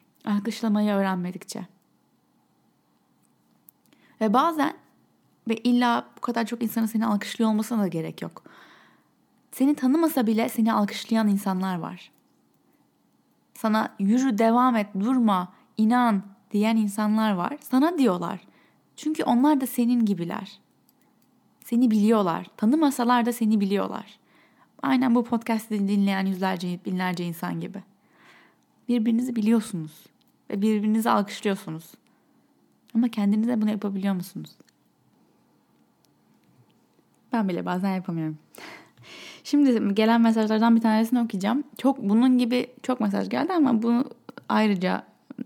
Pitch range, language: 195-240 Hz, Turkish